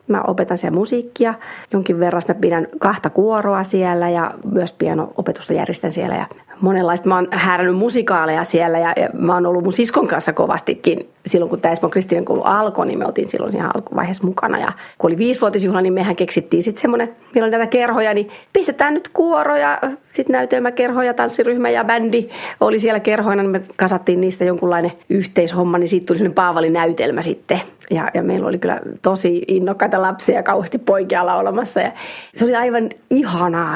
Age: 30-49